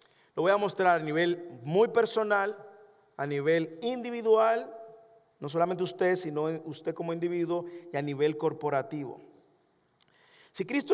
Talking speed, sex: 130 wpm, male